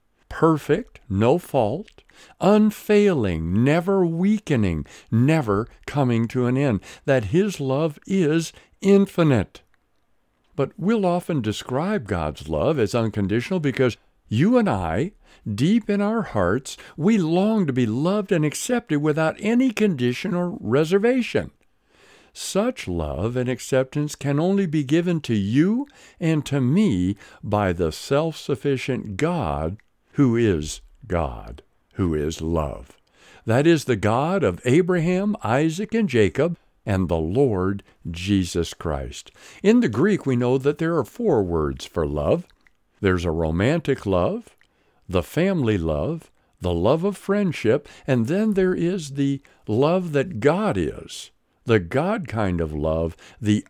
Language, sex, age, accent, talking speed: English, male, 60-79, American, 135 wpm